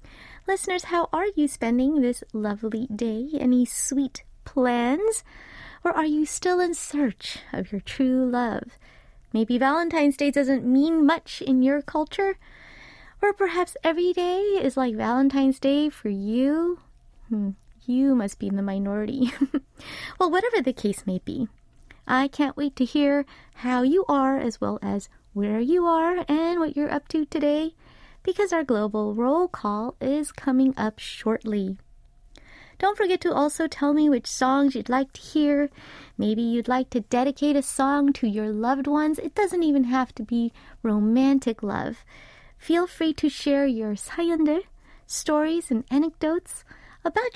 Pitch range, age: 235-310 Hz, 20-39